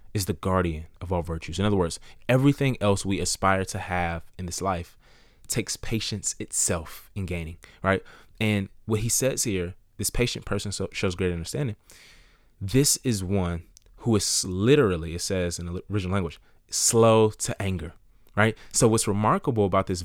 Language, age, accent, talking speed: English, 20-39, American, 170 wpm